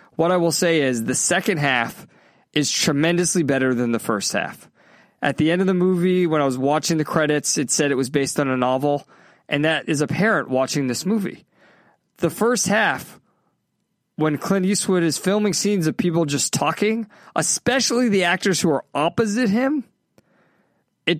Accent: American